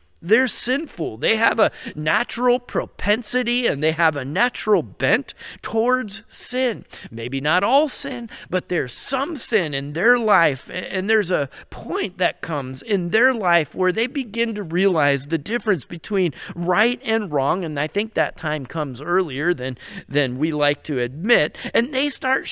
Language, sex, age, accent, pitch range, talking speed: English, male, 40-59, American, 155-225 Hz, 165 wpm